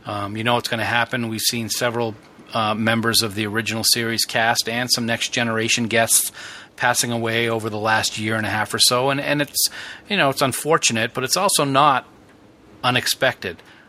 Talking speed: 215 wpm